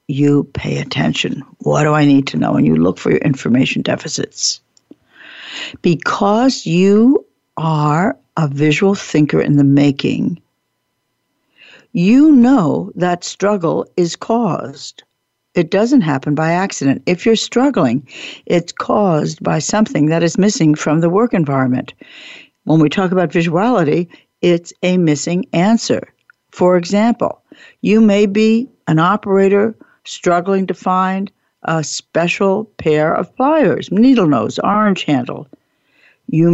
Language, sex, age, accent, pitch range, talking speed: English, female, 60-79, American, 155-205 Hz, 130 wpm